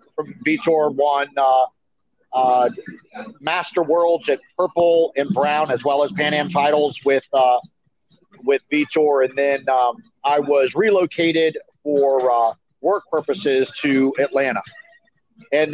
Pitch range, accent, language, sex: 135-170 Hz, American, English, male